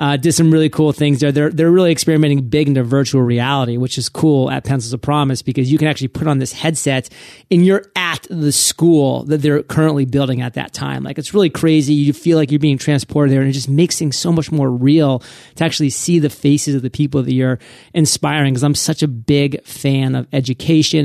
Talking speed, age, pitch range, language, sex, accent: 230 wpm, 30-49, 135-160 Hz, English, male, American